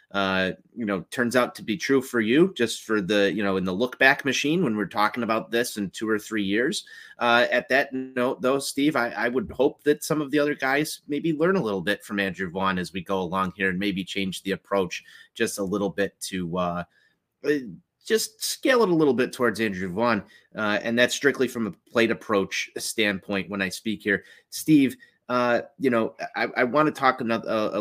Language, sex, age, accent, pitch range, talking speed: English, male, 30-49, American, 95-125 Hz, 220 wpm